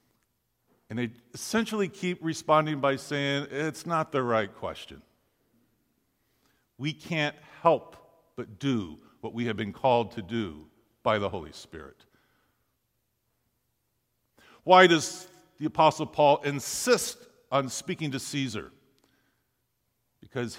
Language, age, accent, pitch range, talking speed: English, 50-69, American, 120-175 Hz, 115 wpm